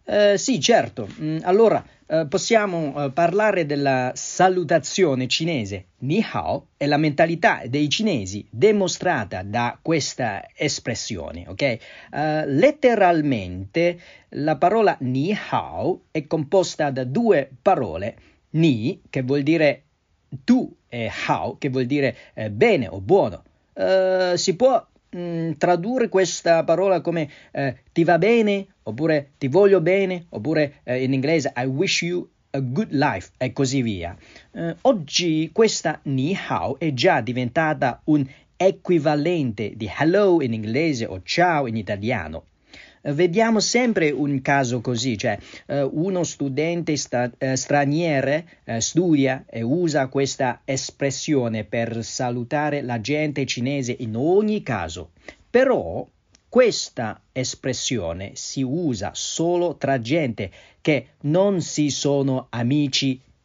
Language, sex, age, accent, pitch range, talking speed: Italian, male, 40-59, native, 130-175 Hz, 125 wpm